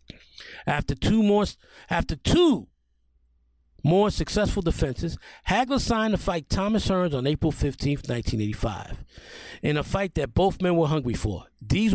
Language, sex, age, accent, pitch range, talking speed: English, male, 40-59, American, 135-210 Hz, 140 wpm